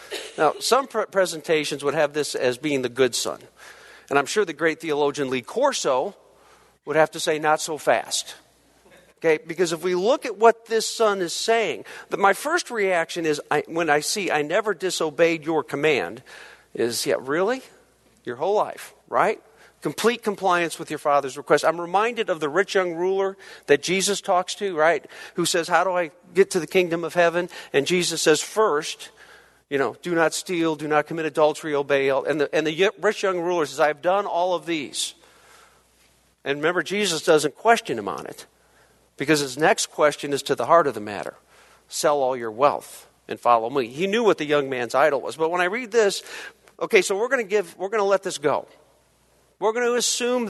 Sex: male